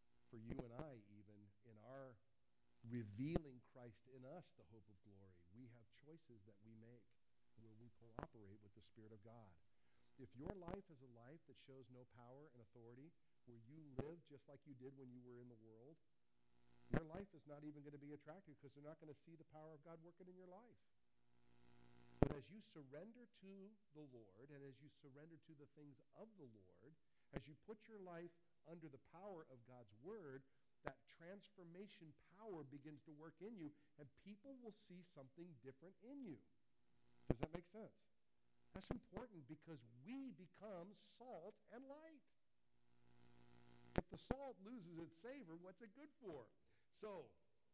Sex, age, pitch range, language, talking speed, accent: male, 50-69, 115-180 Hz, English, 180 wpm, American